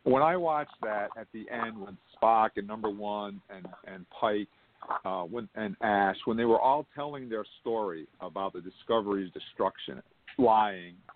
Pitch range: 110-170 Hz